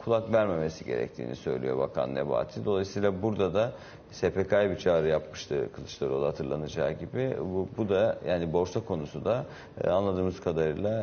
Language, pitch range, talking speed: Turkish, 85-105 Hz, 135 wpm